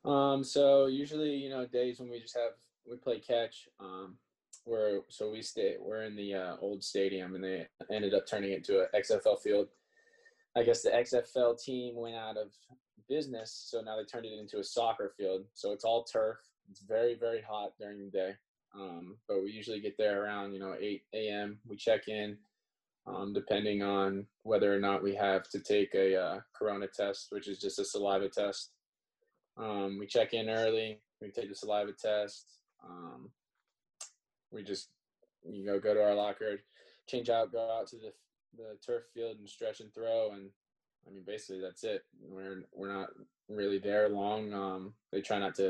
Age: 20-39